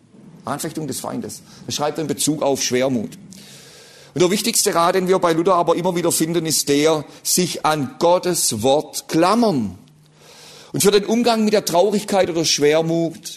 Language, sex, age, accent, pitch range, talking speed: German, male, 50-69, German, 145-195 Hz, 175 wpm